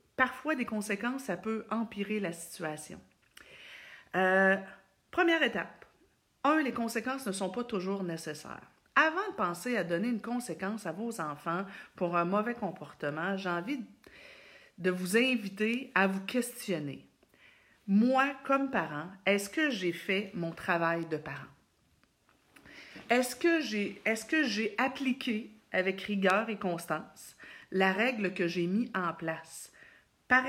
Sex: female